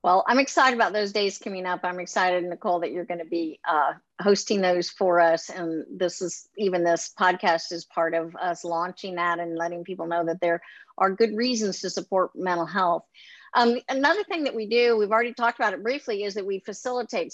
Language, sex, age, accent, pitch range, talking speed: English, female, 50-69, American, 185-240 Hz, 215 wpm